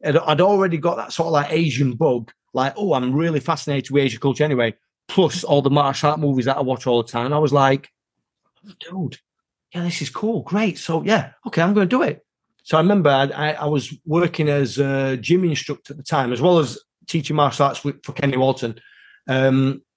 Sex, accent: male, British